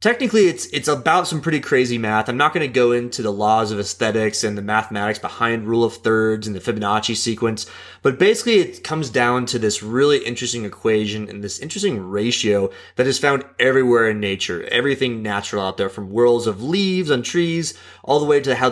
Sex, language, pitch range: male, English, 105-140 Hz